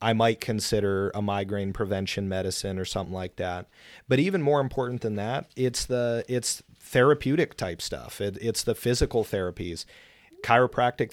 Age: 40-59